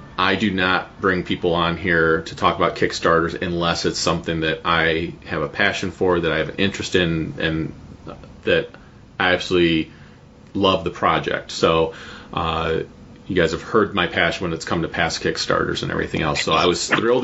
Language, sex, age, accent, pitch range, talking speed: English, male, 30-49, American, 85-105 Hz, 190 wpm